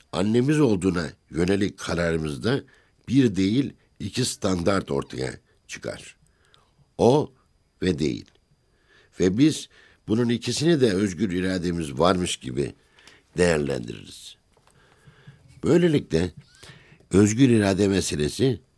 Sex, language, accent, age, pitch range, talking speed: male, Turkish, native, 60-79, 80-110 Hz, 85 wpm